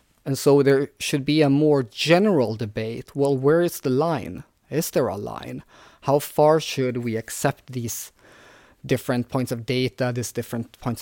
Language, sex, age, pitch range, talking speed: Danish, male, 30-49, 115-145 Hz, 170 wpm